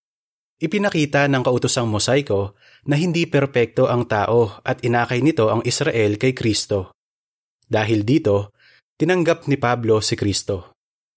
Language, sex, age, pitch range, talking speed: Filipino, male, 20-39, 105-135 Hz, 125 wpm